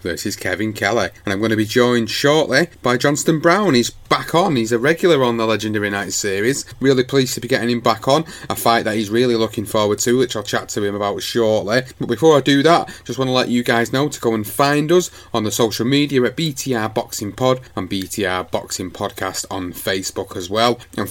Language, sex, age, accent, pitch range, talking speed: English, male, 30-49, British, 105-130 Hz, 235 wpm